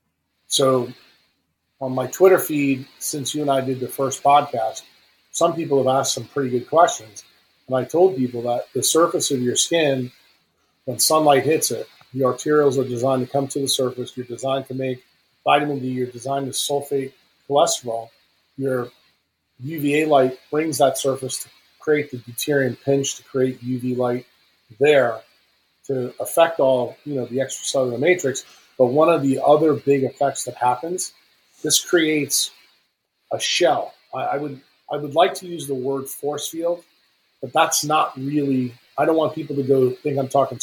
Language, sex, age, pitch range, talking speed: English, male, 40-59, 125-150 Hz, 175 wpm